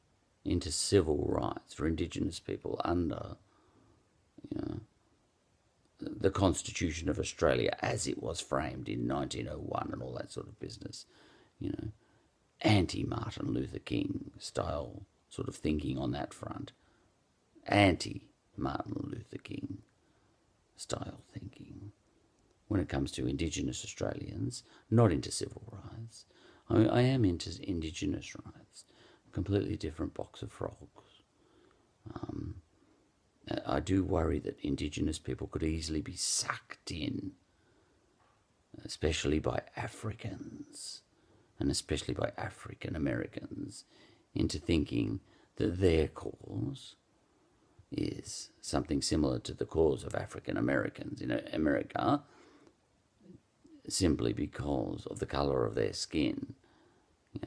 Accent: Australian